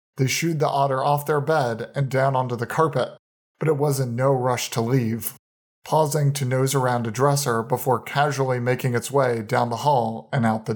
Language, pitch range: English, 120-145 Hz